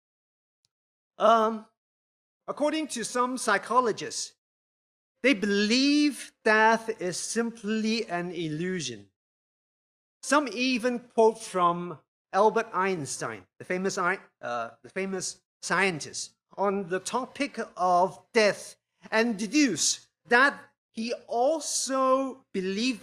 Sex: male